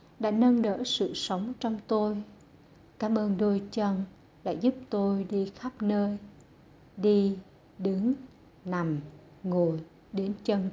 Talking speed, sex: 130 wpm, female